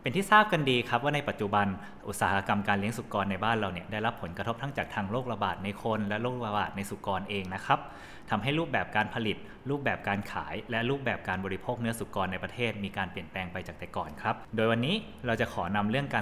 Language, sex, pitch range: Thai, male, 100-125 Hz